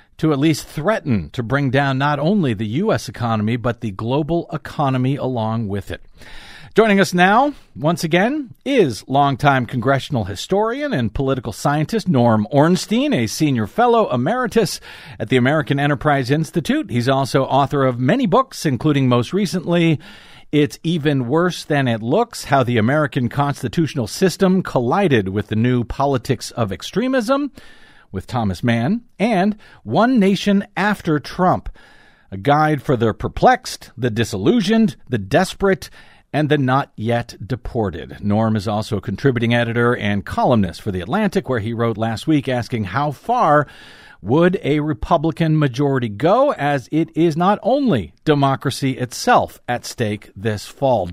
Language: English